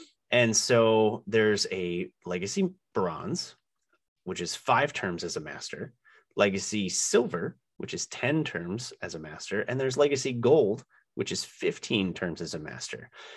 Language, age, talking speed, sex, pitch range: English, 30-49, 150 wpm, male, 95-125 Hz